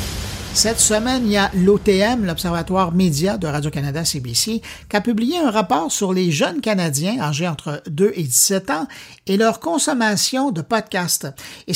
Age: 50-69